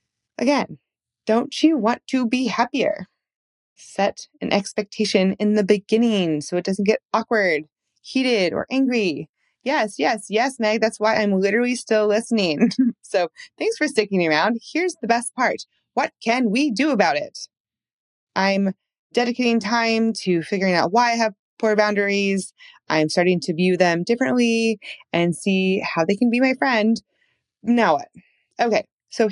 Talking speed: 155 wpm